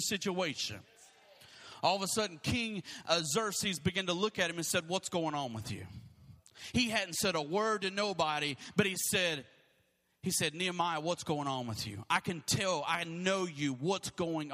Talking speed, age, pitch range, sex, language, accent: 185 wpm, 30-49, 170-245 Hz, male, English, American